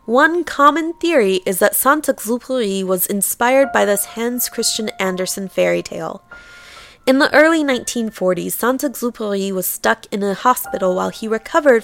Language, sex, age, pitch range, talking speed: English, female, 20-39, 190-270 Hz, 150 wpm